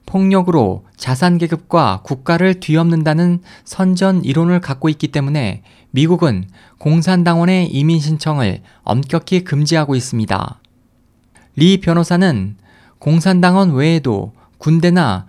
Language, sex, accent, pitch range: Korean, male, native, 120-175 Hz